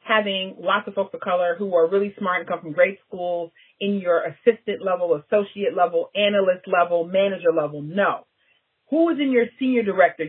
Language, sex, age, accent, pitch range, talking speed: English, female, 40-59, American, 175-245 Hz, 185 wpm